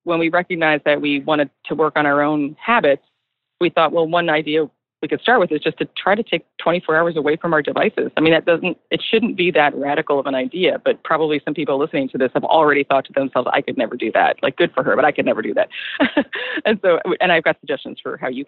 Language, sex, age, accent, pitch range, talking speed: English, female, 20-39, American, 140-170 Hz, 265 wpm